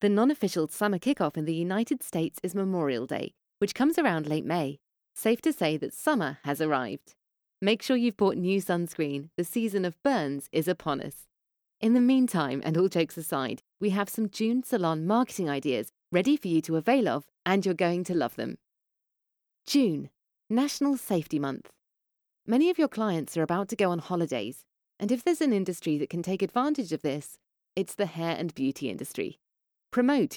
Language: English